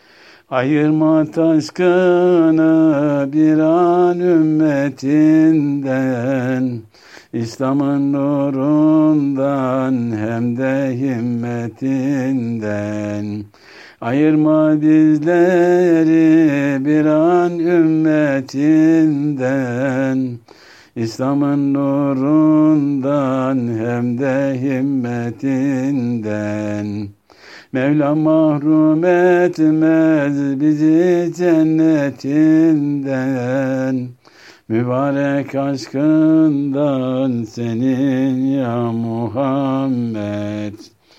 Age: 60-79